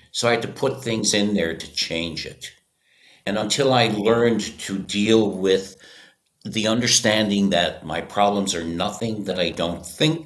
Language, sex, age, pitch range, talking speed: English, male, 60-79, 85-120 Hz, 170 wpm